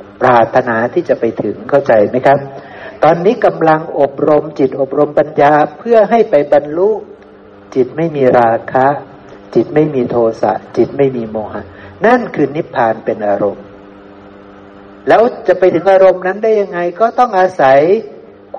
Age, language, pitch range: 60-79, Thai, 120-180 Hz